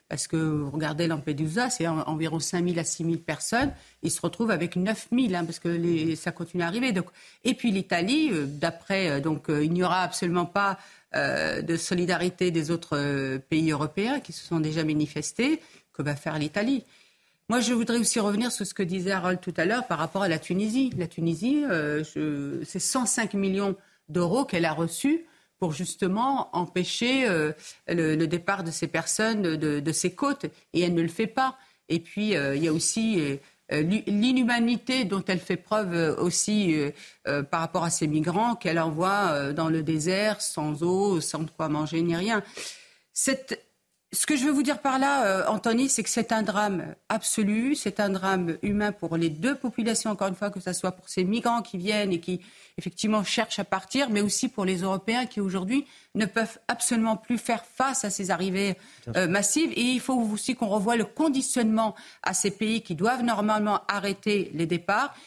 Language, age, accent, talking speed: French, 50-69, French, 195 wpm